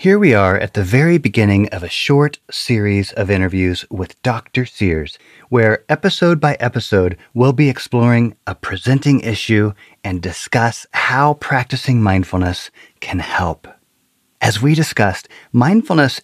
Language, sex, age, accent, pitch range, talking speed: English, male, 30-49, American, 95-130 Hz, 135 wpm